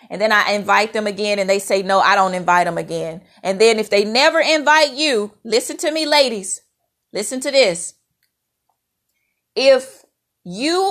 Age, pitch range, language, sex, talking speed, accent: 30-49, 200-275 Hz, English, female, 170 wpm, American